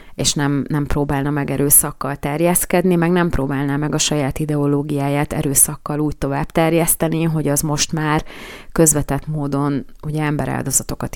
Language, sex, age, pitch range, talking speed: Hungarian, female, 30-49, 145-160 Hz, 135 wpm